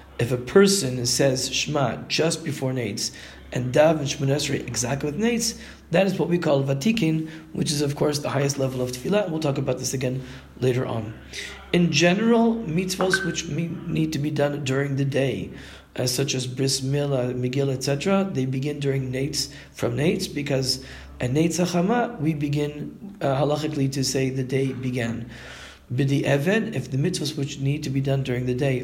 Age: 40-59